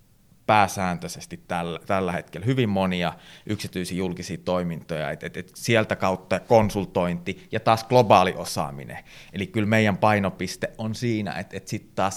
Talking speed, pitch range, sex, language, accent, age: 145 wpm, 90-115 Hz, male, Finnish, native, 30-49